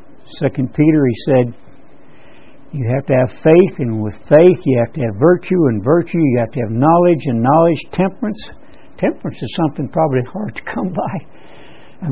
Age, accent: 60-79, American